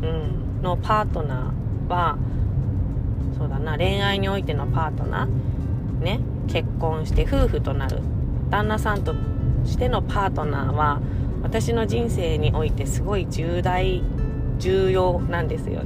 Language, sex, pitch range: Japanese, female, 100-125 Hz